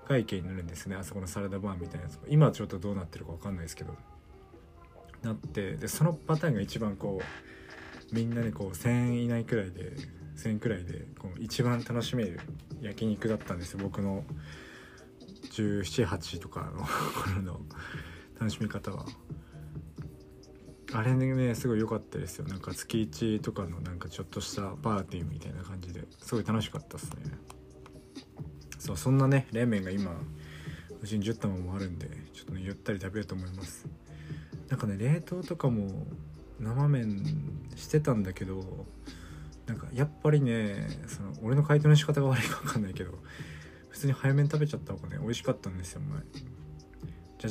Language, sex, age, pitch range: Japanese, male, 20-39, 85-125 Hz